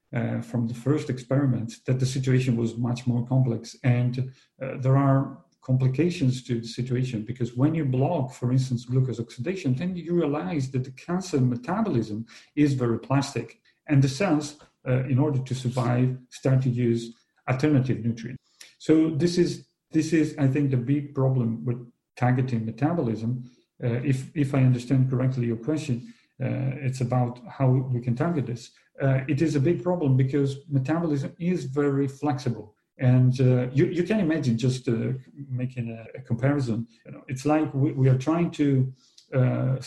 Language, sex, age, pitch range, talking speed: English, male, 40-59, 120-145 Hz, 165 wpm